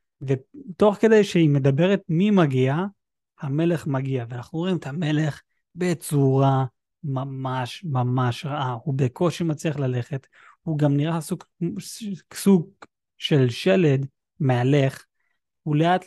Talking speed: 110 wpm